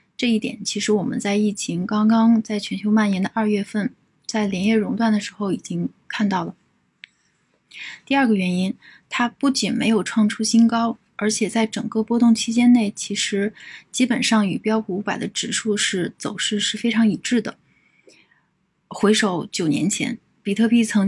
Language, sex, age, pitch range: Chinese, female, 20-39, 200-230 Hz